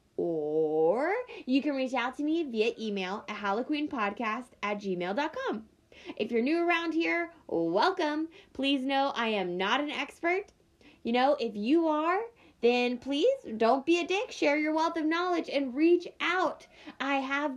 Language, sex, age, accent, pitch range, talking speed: English, female, 20-39, American, 215-300 Hz, 160 wpm